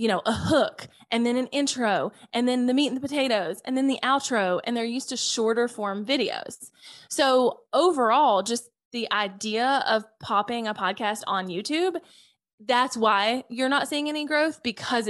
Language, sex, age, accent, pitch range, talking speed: English, female, 20-39, American, 205-260 Hz, 180 wpm